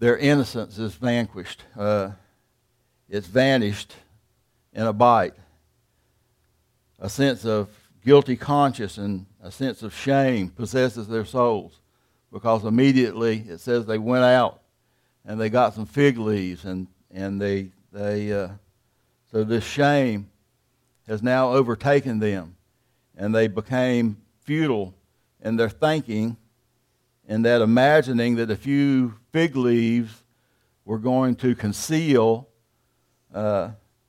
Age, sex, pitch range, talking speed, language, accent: 60-79, male, 105-130 Hz, 120 wpm, English, American